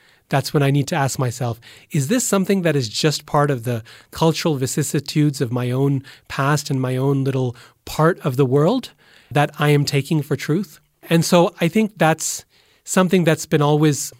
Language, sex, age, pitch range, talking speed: English, male, 30-49, 125-155 Hz, 190 wpm